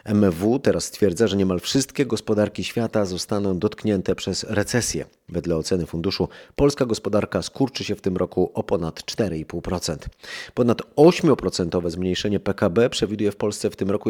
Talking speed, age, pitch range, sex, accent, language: 150 wpm, 30-49, 95-110 Hz, male, native, Polish